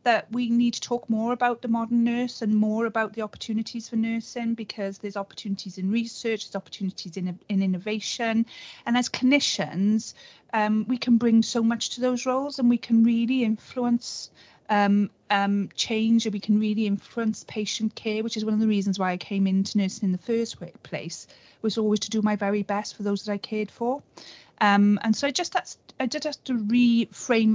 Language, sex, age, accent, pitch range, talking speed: English, female, 40-59, British, 195-230 Hz, 205 wpm